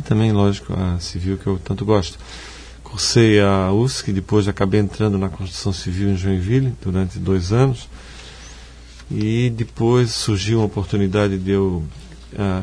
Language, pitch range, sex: Portuguese, 95-110 Hz, male